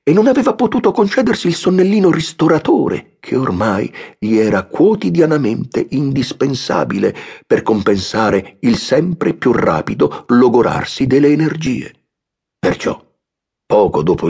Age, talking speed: 50-69, 110 wpm